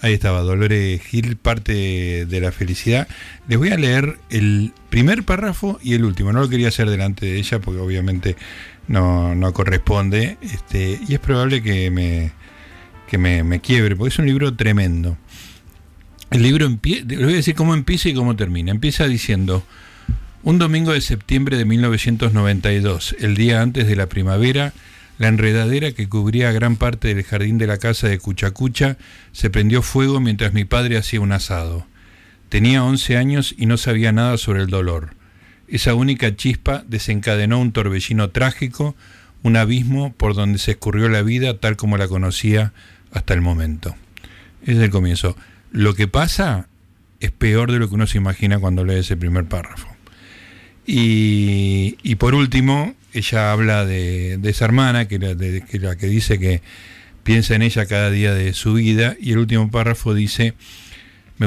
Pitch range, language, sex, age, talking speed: 95-120 Hz, Spanish, male, 50-69, 170 wpm